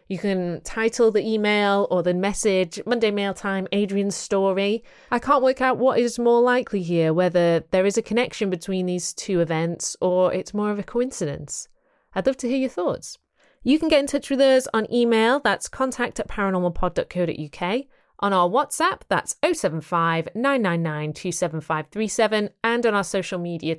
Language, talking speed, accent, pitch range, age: English, 170 wpm, British, 175-245 Hz, 30-49